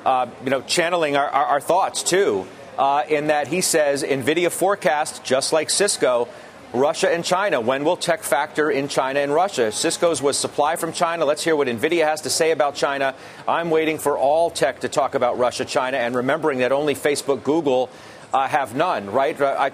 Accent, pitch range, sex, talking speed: American, 140-165 Hz, male, 200 wpm